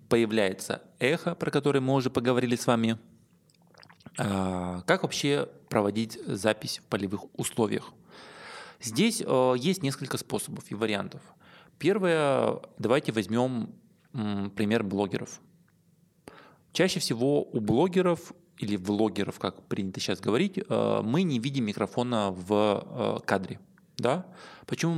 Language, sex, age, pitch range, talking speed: Russian, male, 20-39, 110-160 Hz, 105 wpm